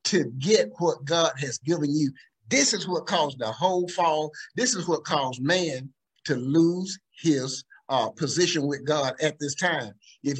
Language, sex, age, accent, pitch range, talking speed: English, male, 50-69, American, 140-195 Hz, 175 wpm